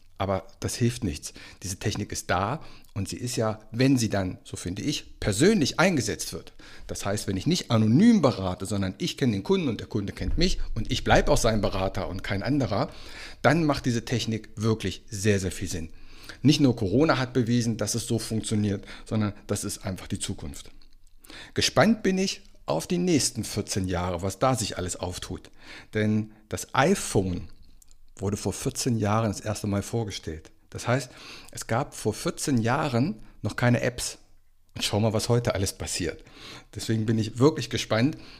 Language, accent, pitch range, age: German, German, 95-125 Hz, 60-79